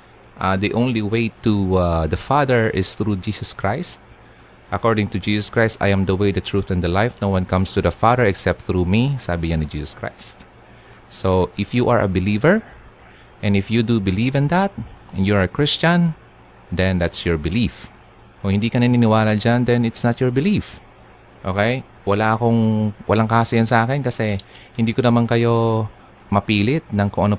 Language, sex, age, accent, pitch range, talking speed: Filipino, male, 30-49, native, 100-125 Hz, 185 wpm